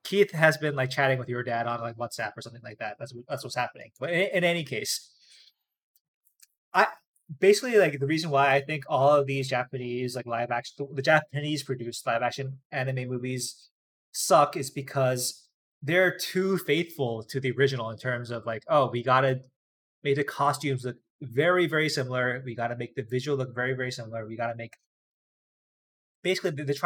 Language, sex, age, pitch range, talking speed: English, male, 20-39, 130-175 Hz, 195 wpm